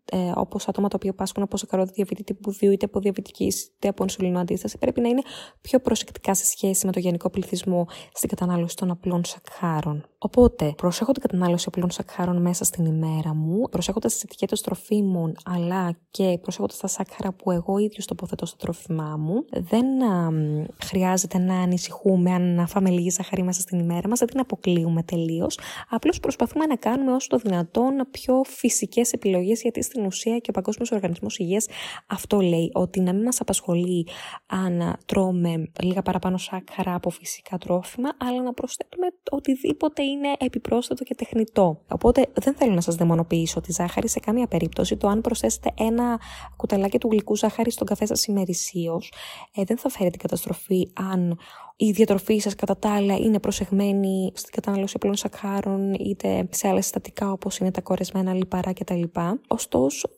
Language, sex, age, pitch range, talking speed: Greek, female, 20-39, 180-230 Hz, 170 wpm